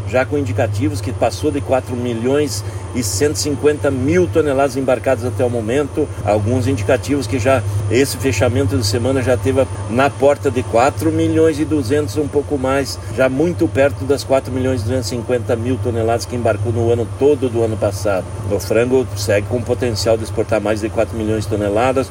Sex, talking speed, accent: male, 185 wpm, Brazilian